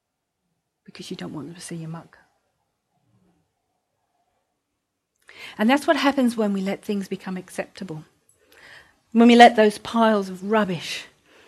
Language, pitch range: English, 180-230 Hz